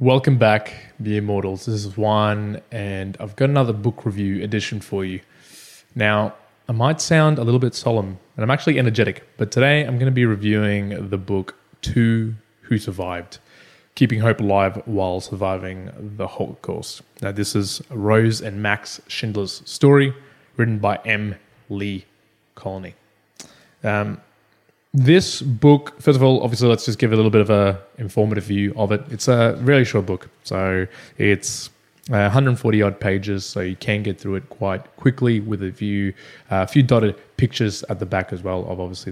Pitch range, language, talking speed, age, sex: 100-125 Hz, English, 170 wpm, 20-39, male